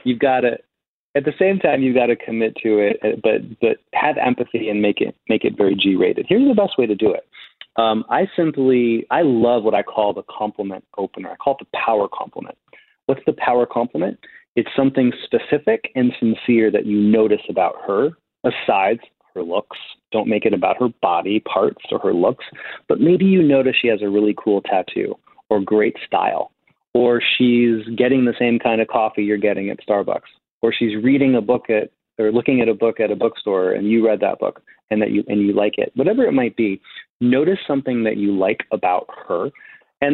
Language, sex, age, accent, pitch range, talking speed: English, male, 30-49, American, 110-135 Hz, 210 wpm